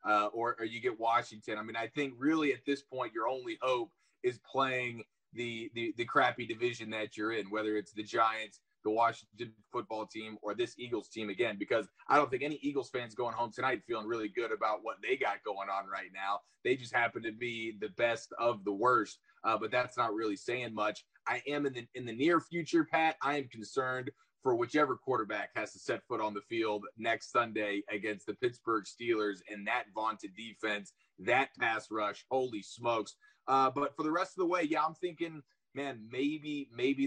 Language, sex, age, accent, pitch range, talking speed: English, male, 20-39, American, 115-155 Hz, 210 wpm